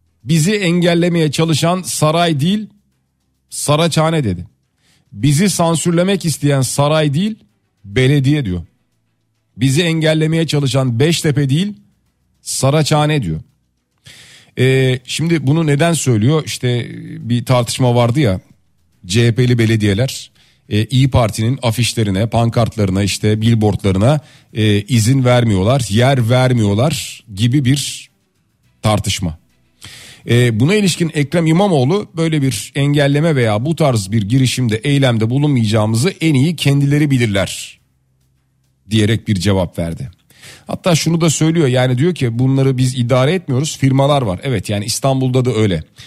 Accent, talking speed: native, 115 wpm